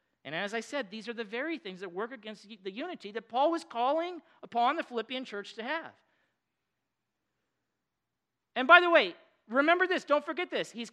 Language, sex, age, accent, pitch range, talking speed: English, male, 40-59, American, 175-270 Hz, 185 wpm